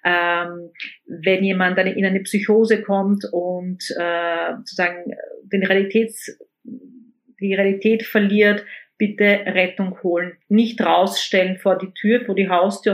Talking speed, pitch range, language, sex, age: 120 wpm, 185-220 Hz, German, female, 40-59